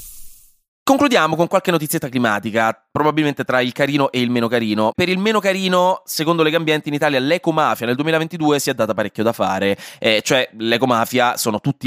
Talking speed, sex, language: 175 wpm, male, Italian